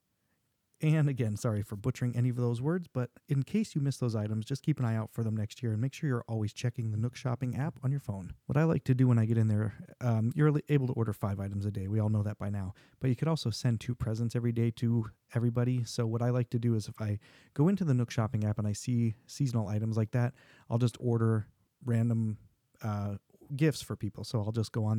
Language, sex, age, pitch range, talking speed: English, male, 30-49, 110-130 Hz, 265 wpm